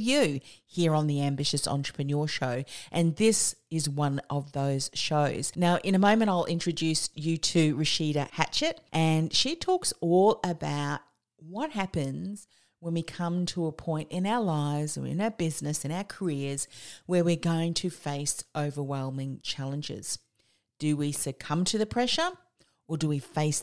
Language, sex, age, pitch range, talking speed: English, female, 40-59, 145-175 Hz, 165 wpm